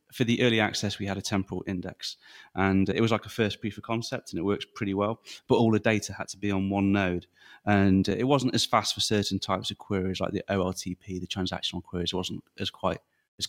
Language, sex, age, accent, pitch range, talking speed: English, male, 30-49, British, 95-105 Hz, 235 wpm